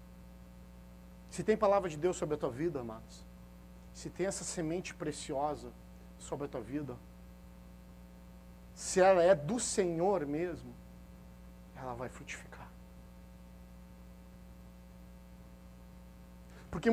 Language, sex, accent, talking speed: Portuguese, male, Brazilian, 105 wpm